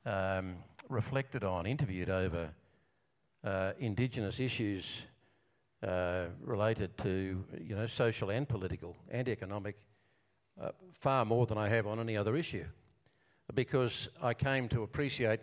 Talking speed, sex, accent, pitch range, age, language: 130 wpm, male, Australian, 110-145 Hz, 50-69, English